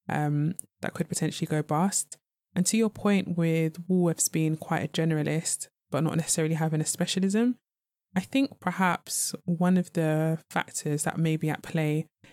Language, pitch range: English, 150-175 Hz